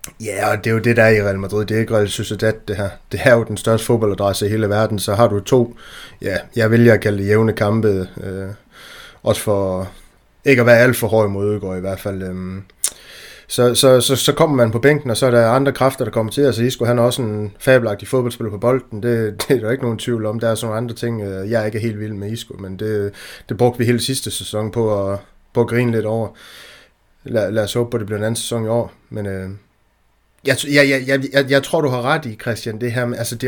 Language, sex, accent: Danish, male, native